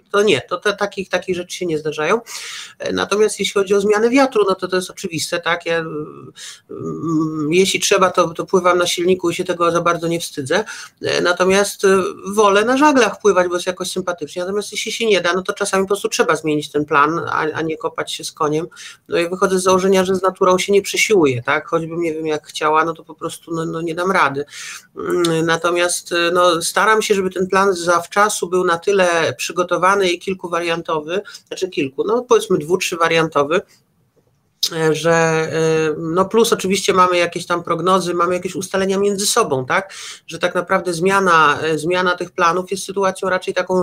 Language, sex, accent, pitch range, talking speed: Polish, male, native, 165-195 Hz, 195 wpm